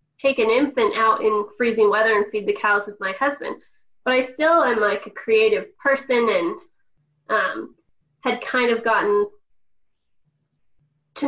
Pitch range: 210-260 Hz